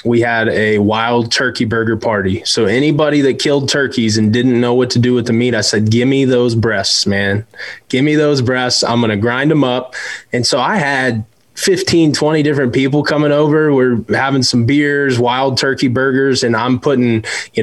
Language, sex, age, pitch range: English, male, 20-39, 115-135 Hz